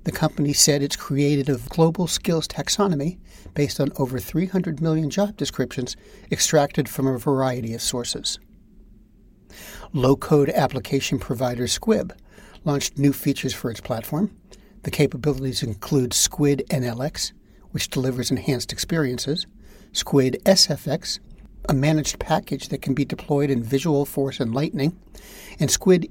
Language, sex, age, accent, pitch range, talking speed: English, male, 60-79, American, 135-165 Hz, 130 wpm